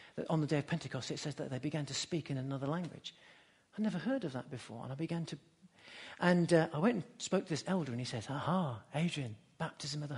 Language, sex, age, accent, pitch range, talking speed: English, male, 50-69, British, 150-205 Hz, 255 wpm